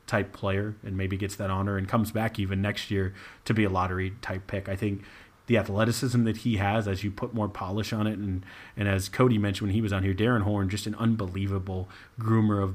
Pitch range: 95-110 Hz